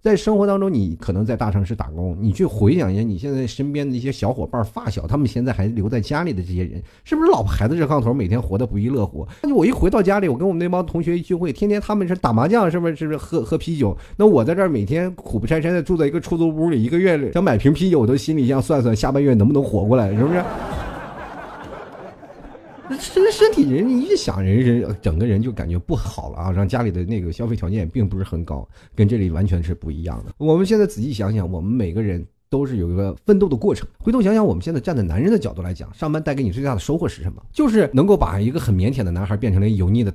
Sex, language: male, Chinese